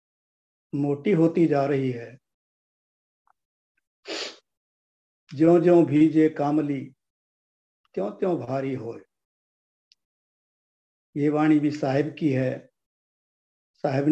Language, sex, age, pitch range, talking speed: Hindi, male, 50-69, 135-180 Hz, 65 wpm